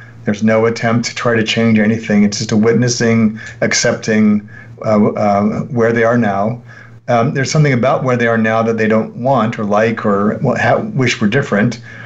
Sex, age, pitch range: male, 40-59, 110-130 Hz